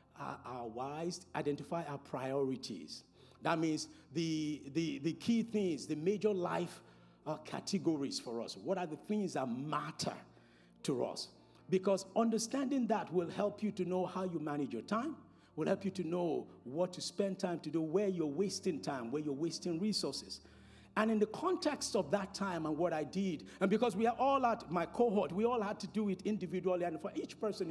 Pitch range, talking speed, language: 155-210 Hz, 190 wpm, English